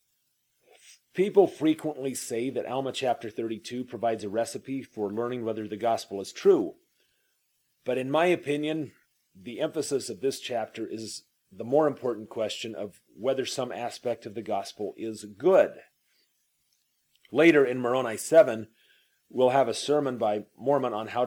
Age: 40-59